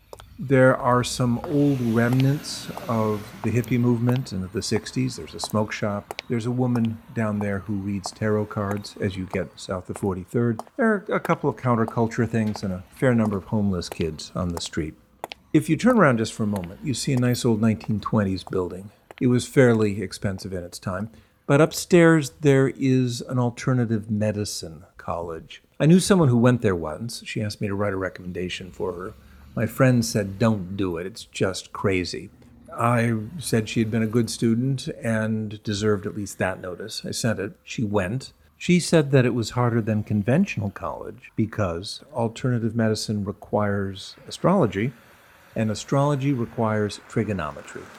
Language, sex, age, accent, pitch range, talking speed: English, male, 50-69, American, 105-125 Hz, 175 wpm